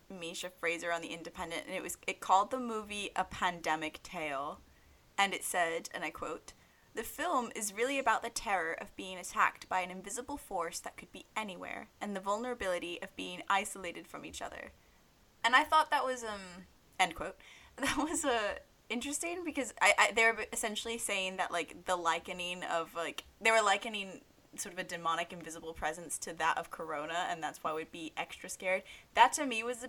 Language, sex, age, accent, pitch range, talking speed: English, female, 10-29, American, 170-225 Hz, 195 wpm